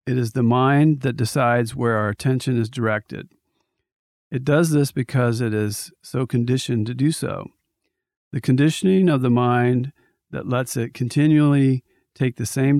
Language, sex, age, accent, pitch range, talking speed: English, male, 50-69, American, 115-135 Hz, 160 wpm